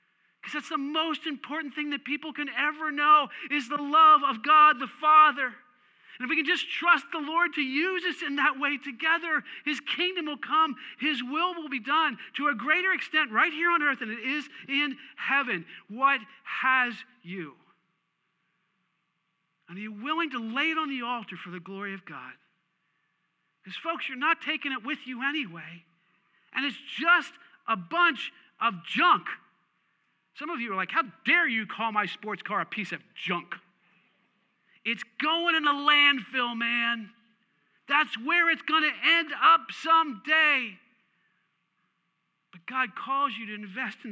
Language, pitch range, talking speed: English, 200-305 Hz, 170 wpm